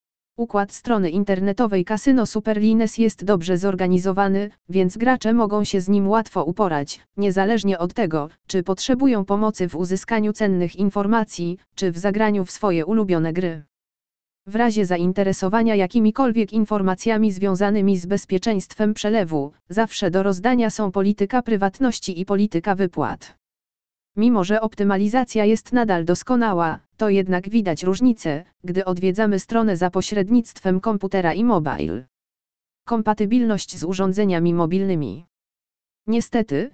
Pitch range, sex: 180-220 Hz, female